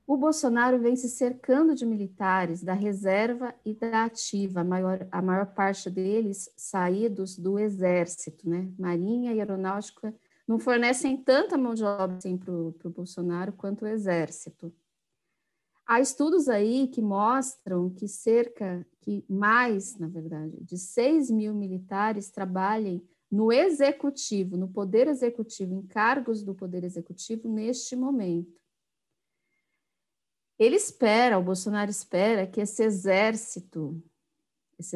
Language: Portuguese